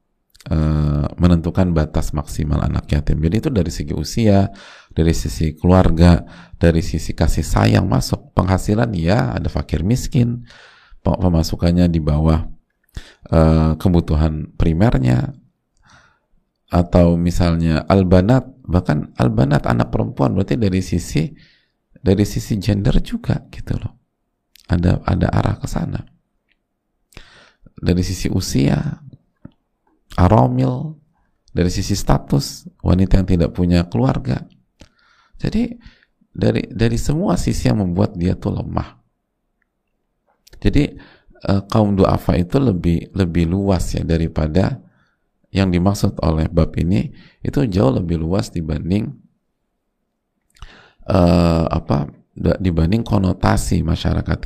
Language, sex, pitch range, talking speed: Indonesian, male, 80-105 Hz, 110 wpm